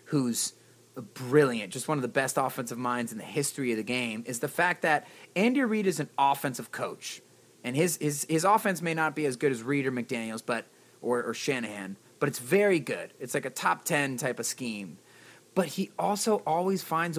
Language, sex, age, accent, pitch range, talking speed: English, male, 30-49, American, 125-170 Hz, 210 wpm